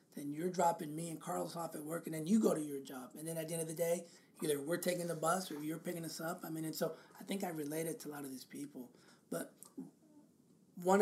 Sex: male